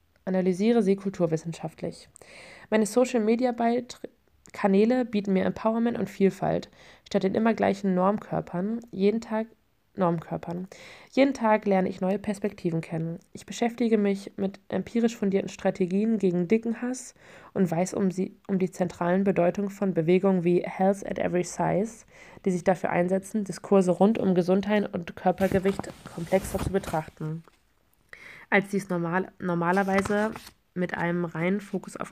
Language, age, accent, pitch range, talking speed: German, 20-39, German, 180-210 Hz, 135 wpm